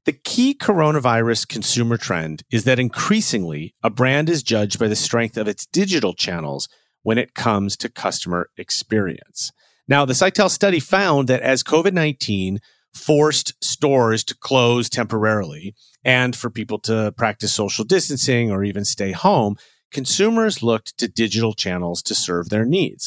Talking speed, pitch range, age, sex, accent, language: 150 wpm, 110-145 Hz, 40-59, male, American, English